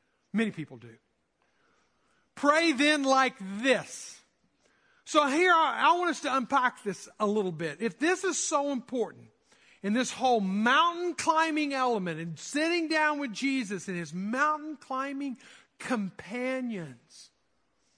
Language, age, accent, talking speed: English, 50-69, American, 130 wpm